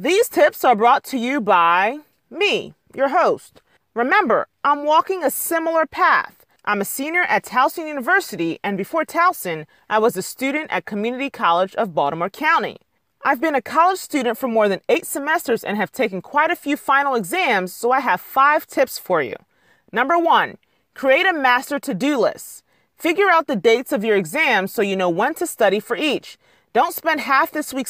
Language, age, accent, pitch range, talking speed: English, 30-49, American, 215-315 Hz, 185 wpm